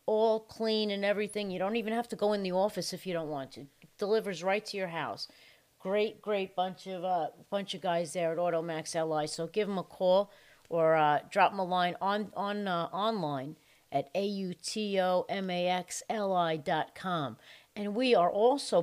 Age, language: 40-59, English